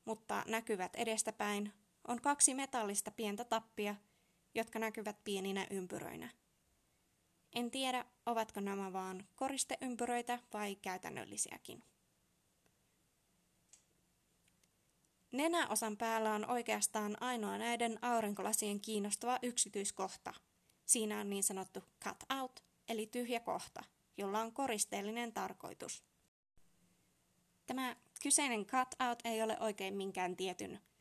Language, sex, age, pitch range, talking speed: Finnish, female, 20-39, 205-245 Hz, 95 wpm